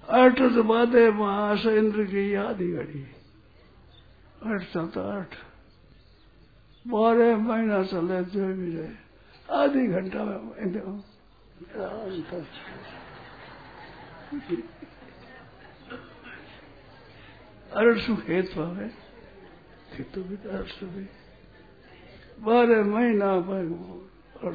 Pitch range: 160-210 Hz